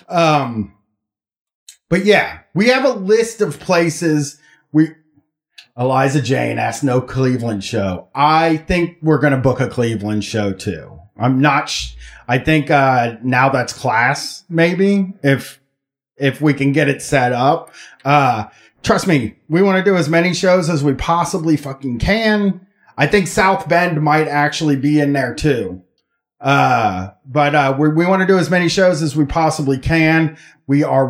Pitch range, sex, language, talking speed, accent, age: 135-190 Hz, male, English, 165 wpm, American, 30-49